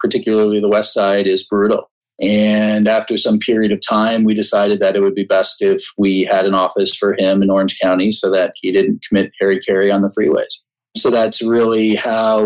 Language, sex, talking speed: English, male, 205 wpm